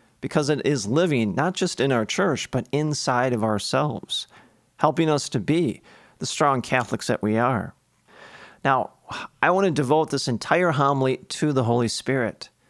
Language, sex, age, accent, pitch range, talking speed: English, male, 40-59, American, 120-160 Hz, 165 wpm